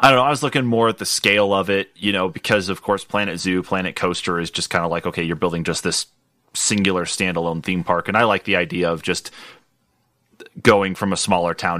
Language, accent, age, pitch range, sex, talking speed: English, American, 30-49, 85-95 Hz, male, 240 wpm